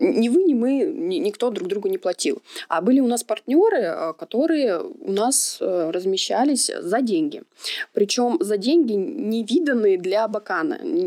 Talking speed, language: 145 wpm, Russian